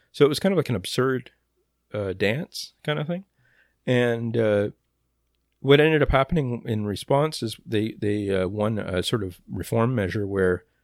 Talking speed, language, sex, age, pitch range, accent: 175 wpm, English, male, 40-59, 90-110 Hz, American